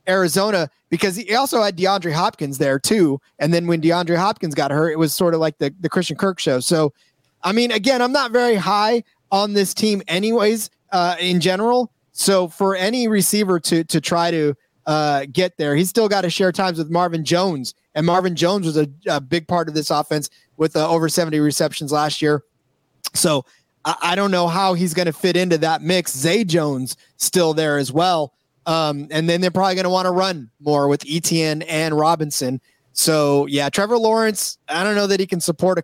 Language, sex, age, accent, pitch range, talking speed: English, male, 30-49, American, 150-185 Hz, 210 wpm